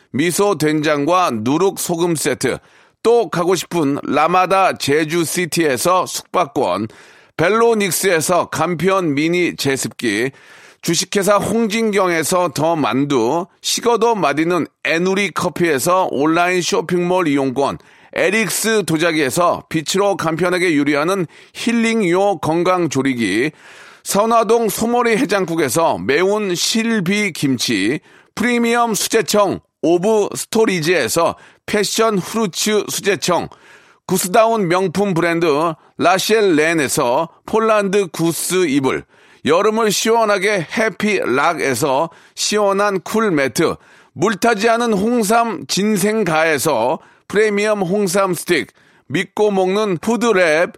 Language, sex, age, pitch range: Korean, male, 40-59, 170-220 Hz